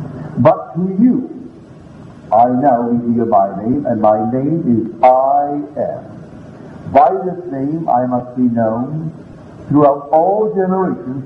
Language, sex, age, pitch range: English, male, 60-79, 125-160 Hz